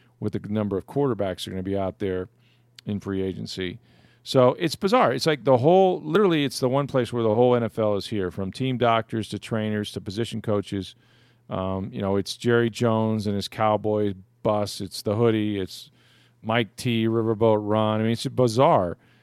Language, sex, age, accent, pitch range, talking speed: English, male, 40-59, American, 100-120 Hz, 200 wpm